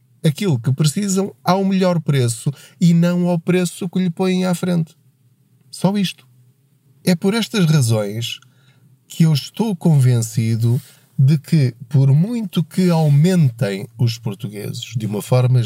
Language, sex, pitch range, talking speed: Portuguese, male, 125-170 Hz, 140 wpm